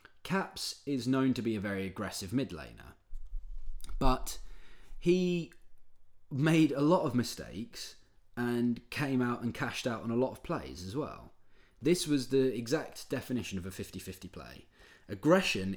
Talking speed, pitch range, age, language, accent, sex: 150 wpm, 95-125 Hz, 20-39, English, British, male